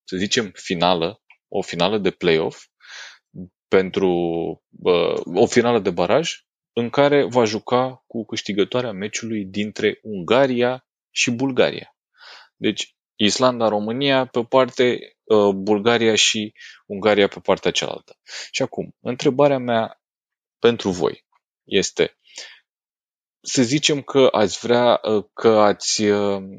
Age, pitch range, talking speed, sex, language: 30-49, 105-125 Hz, 105 wpm, male, Romanian